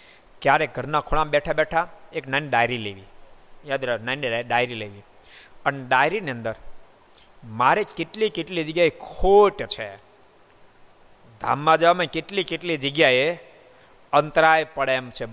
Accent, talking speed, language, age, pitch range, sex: native, 110 wpm, Gujarati, 50-69, 120-160 Hz, male